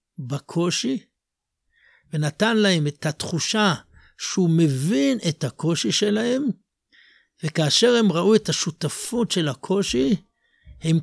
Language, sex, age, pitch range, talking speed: Hebrew, male, 60-79, 140-190 Hz, 100 wpm